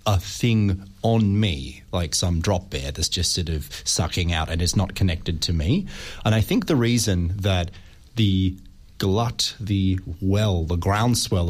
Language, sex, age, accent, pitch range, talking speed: English, male, 30-49, Australian, 90-110 Hz, 165 wpm